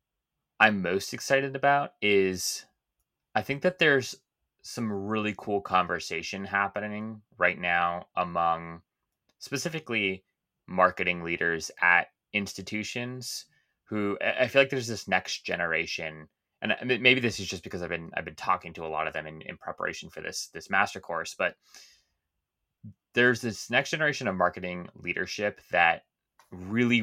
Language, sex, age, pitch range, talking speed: English, male, 20-39, 90-125 Hz, 140 wpm